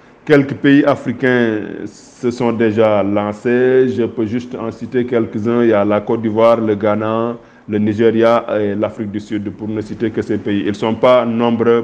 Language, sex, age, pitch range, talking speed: French, male, 50-69, 110-125 Hz, 195 wpm